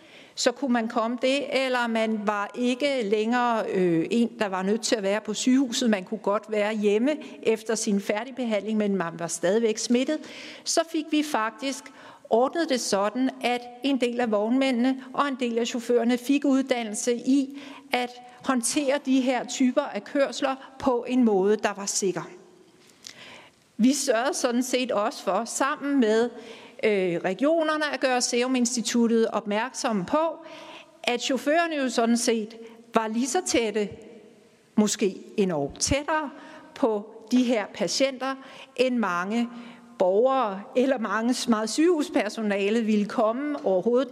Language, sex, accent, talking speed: Danish, female, native, 145 wpm